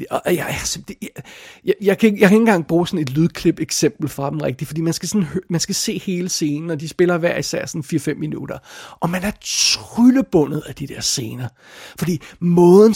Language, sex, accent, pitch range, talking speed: Danish, male, native, 155-190 Hz, 220 wpm